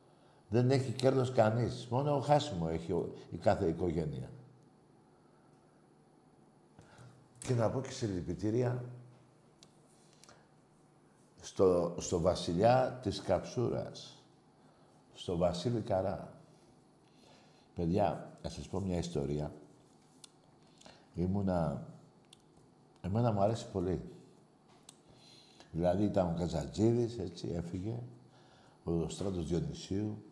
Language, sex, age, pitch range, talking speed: Greek, male, 60-79, 85-125 Hz, 95 wpm